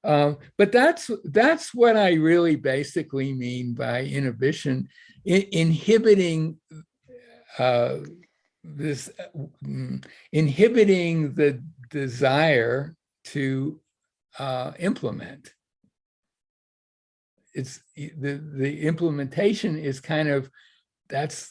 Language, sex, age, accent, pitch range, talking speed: English, male, 60-79, American, 135-170 Hz, 85 wpm